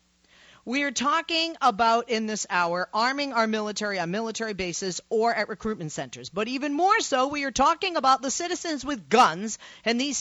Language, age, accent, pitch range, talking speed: English, 40-59, American, 195-280 Hz, 180 wpm